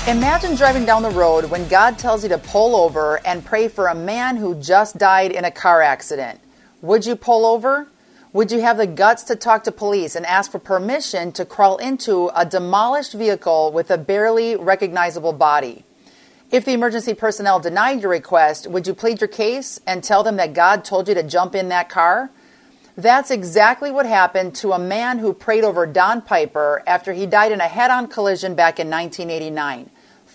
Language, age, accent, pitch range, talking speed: English, 40-59, American, 175-230 Hz, 195 wpm